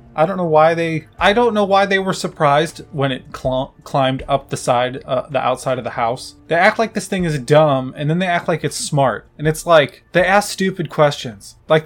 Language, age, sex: English, 20-39, male